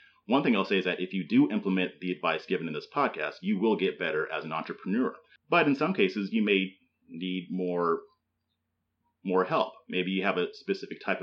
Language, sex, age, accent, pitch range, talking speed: English, male, 30-49, American, 90-100 Hz, 210 wpm